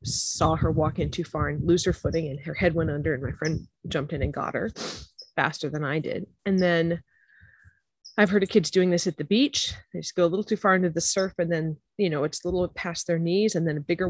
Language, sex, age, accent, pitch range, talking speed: English, female, 30-49, American, 160-205 Hz, 265 wpm